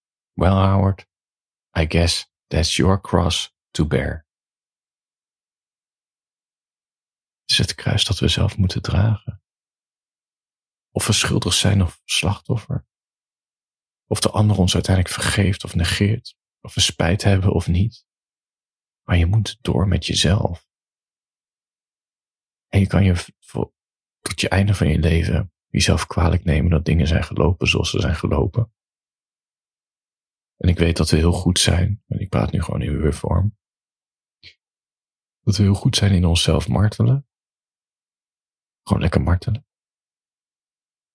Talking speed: 135 wpm